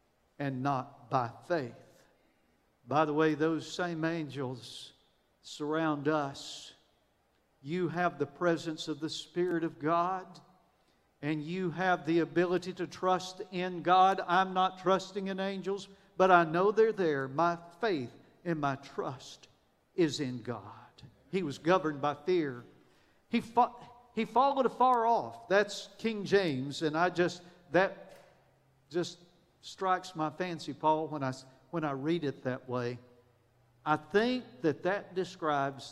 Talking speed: 140 wpm